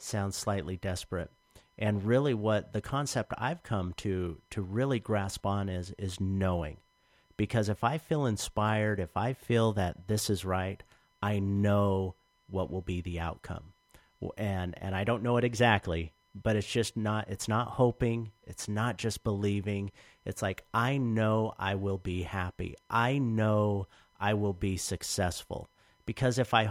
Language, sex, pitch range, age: English, male, 95-120 Hz, 50-69